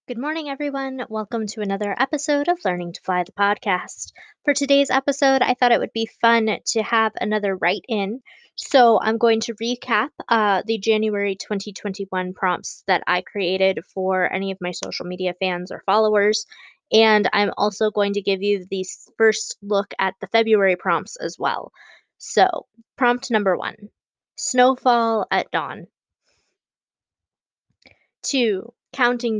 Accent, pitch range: American, 200-245 Hz